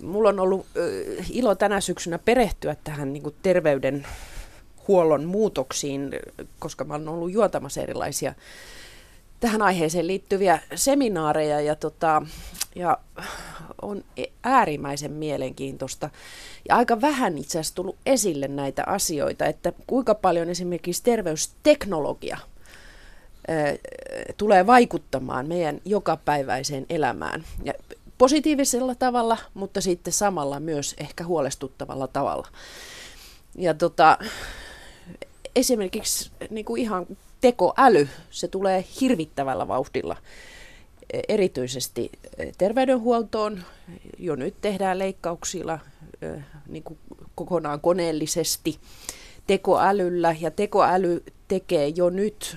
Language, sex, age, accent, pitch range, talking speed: Finnish, female, 30-49, native, 150-210 Hz, 95 wpm